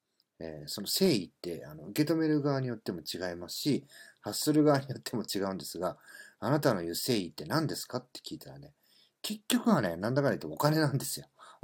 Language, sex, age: Japanese, male, 40-59